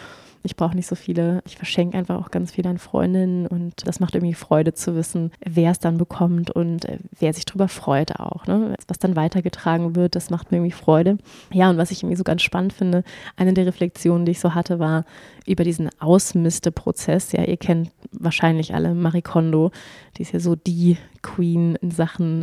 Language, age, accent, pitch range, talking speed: German, 20-39, German, 170-190 Hz, 200 wpm